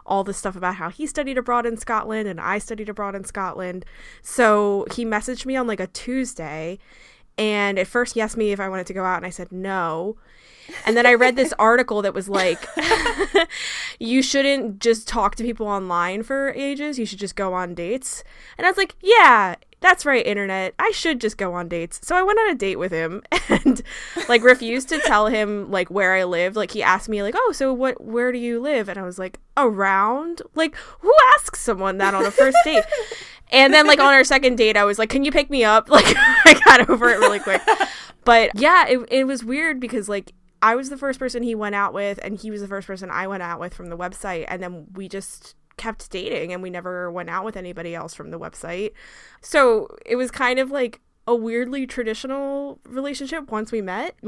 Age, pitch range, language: 10-29, 195-270 Hz, English